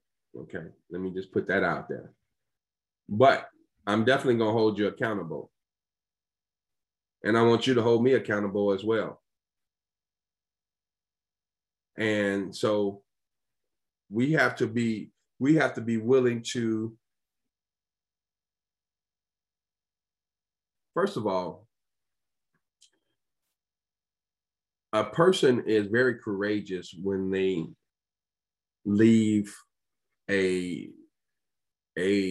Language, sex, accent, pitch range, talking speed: English, male, American, 95-115 Hz, 95 wpm